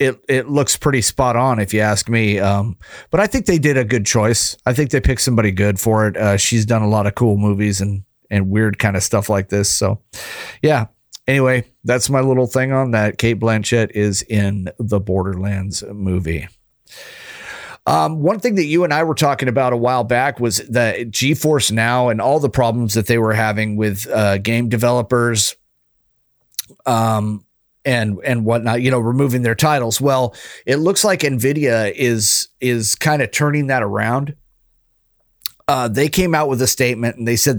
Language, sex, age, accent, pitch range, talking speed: English, male, 40-59, American, 110-135 Hz, 190 wpm